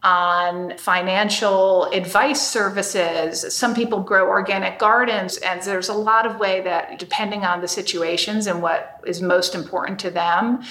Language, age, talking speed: English, 40-59, 150 wpm